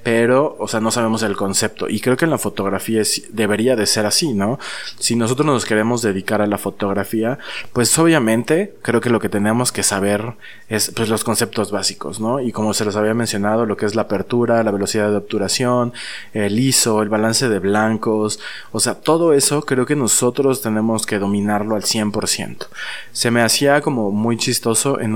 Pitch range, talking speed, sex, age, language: 105-120 Hz, 195 wpm, male, 20-39, Spanish